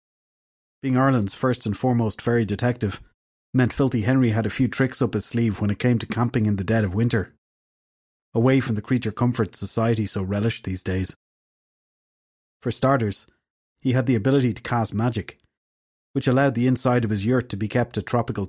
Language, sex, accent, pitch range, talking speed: English, male, Irish, 100-125 Hz, 190 wpm